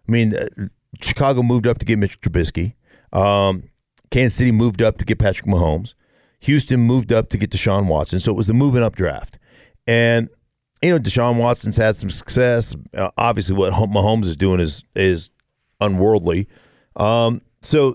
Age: 50-69